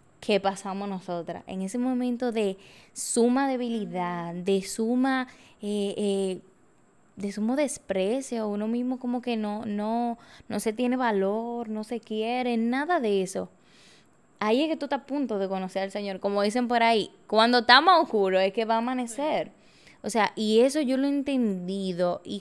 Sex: female